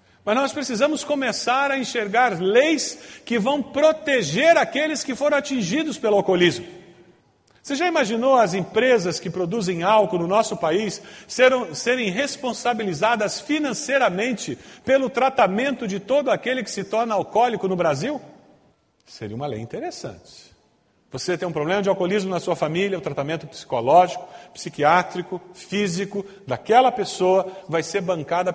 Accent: Brazilian